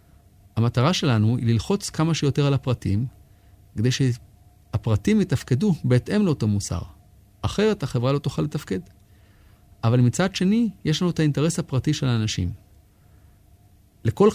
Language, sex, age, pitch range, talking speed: Hebrew, male, 30-49, 100-150 Hz, 130 wpm